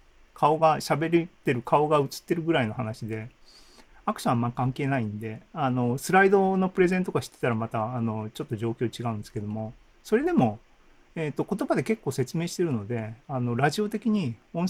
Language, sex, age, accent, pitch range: Japanese, male, 40-59, native, 115-165 Hz